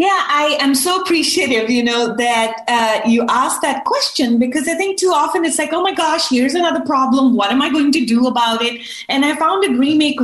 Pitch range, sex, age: 205-260 Hz, female, 30-49